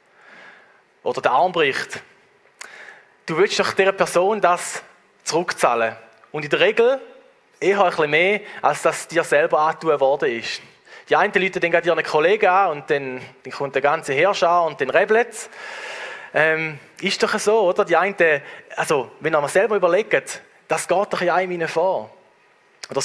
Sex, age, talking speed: male, 20-39, 150 wpm